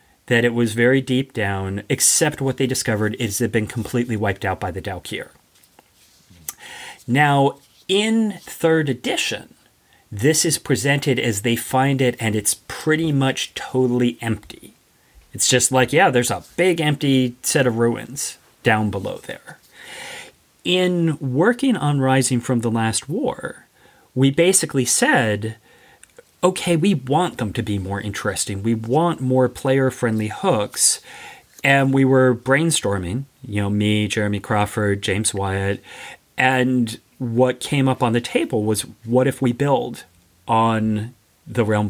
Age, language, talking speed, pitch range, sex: 30-49, English, 145 wpm, 110-135 Hz, male